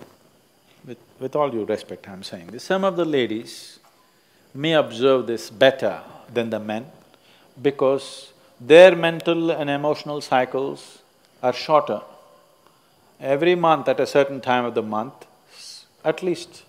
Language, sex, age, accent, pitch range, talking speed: Tamil, male, 50-69, native, 130-170 Hz, 135 wpm